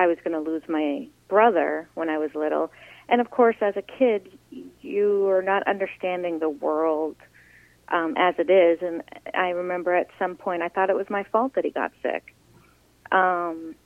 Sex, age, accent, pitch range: female, 40-59, American, 170-205 Hz